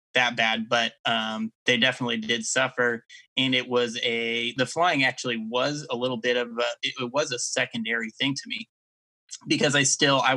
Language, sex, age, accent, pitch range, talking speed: English, male, 20-39, American, 115-125 Hz, 185 wpm